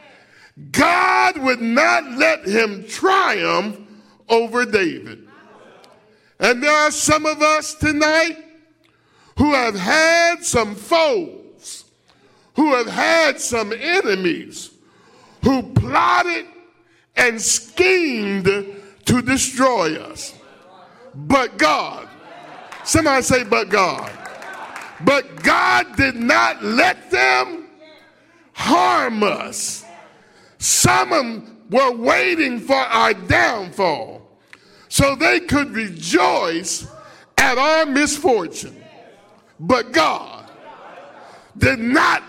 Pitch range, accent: 225-320 Hz, American